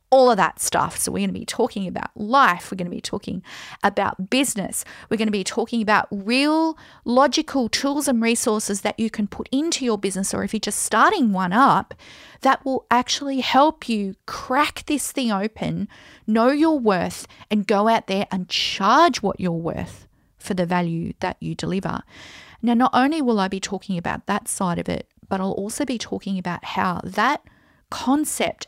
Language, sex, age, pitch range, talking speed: English, female, 40-59, 190-245 Hz, 195 wpm